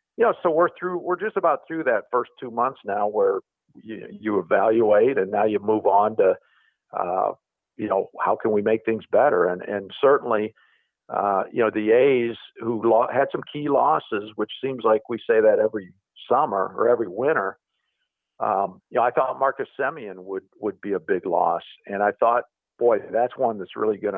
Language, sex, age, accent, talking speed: English, male, 50-69, American, 200 wpm